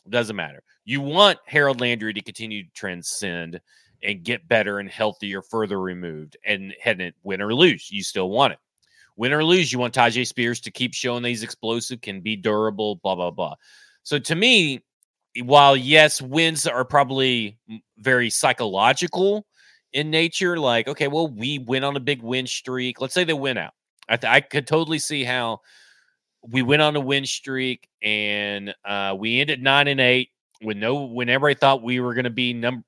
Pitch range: 110-145 Hz